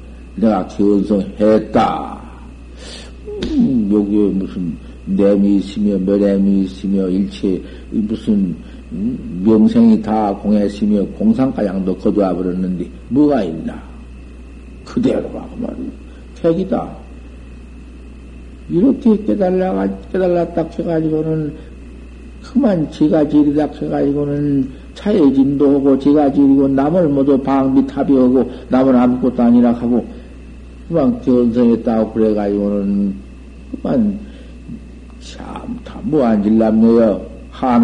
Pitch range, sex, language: 95-145 Hz, male, Korean